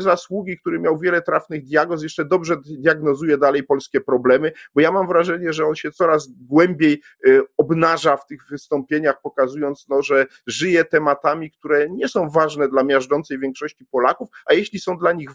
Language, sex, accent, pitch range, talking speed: Polish, male, native, 145-180 Hz, 170 wpm